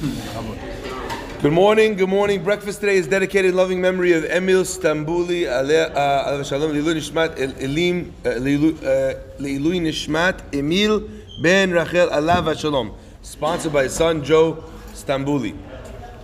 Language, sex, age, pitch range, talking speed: English, male, 30-49, 140-185 Hz, 115 wpm